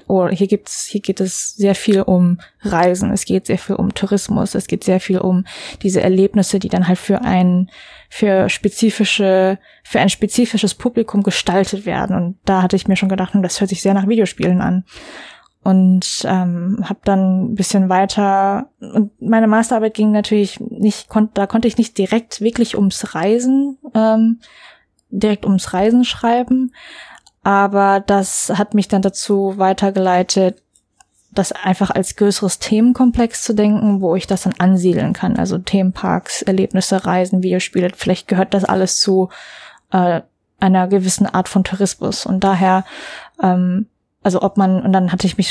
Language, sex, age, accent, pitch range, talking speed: German, female, 20-39, German, 185-210 Hz, 165 wpm